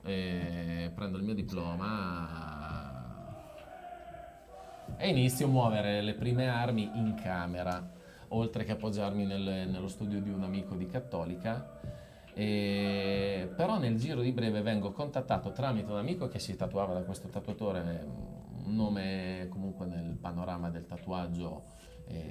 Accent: native